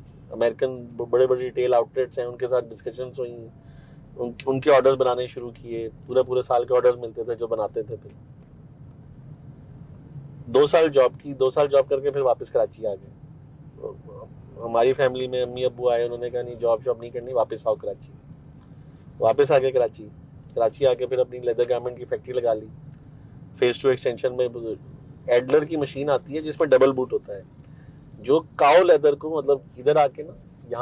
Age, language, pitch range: 30-49, Urdu, 130-165 Hz